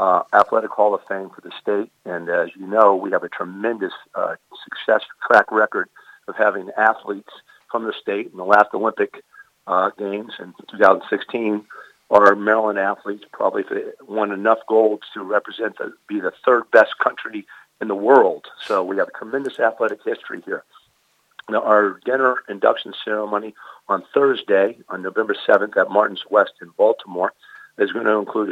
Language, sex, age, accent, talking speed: English, male, 50-69, American, 165 wpm